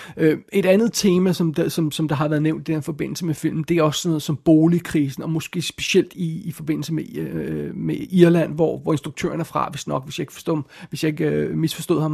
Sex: male